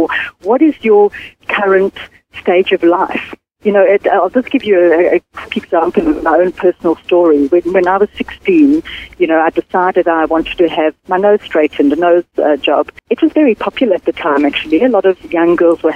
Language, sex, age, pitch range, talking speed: English, female, 60-79, 170-265 Hz, 215 wpm